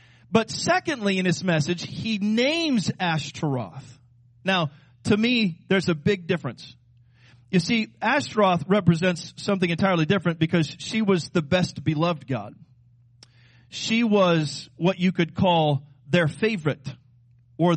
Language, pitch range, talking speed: English, 125-180 Hz, 130 wpm